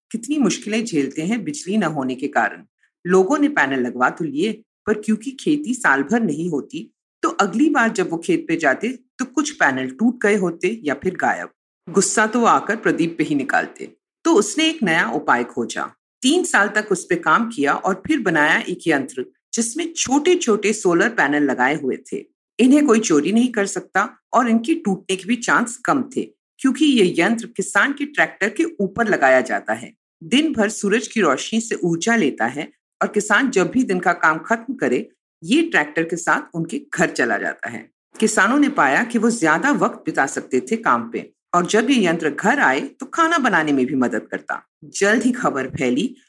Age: 50-69